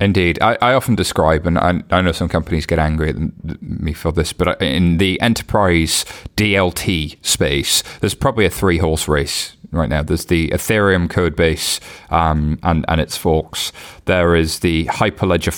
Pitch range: 85-100 Hz